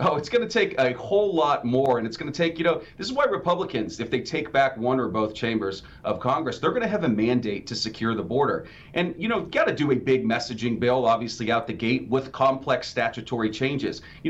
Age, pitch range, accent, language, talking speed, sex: 40-59, 115-150 Hz, American, English, 230 wpm, male